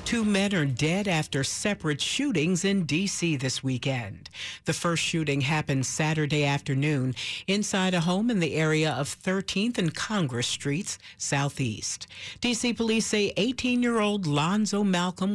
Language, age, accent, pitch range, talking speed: English, 50-69, American, 145-200 Hz, 135 wpm